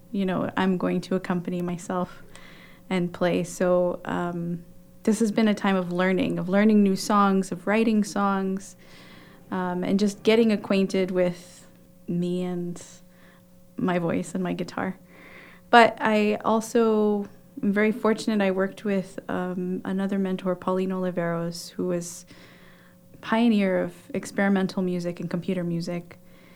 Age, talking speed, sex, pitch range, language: 20-39, 140 wpm, female, 180-205 Hz, English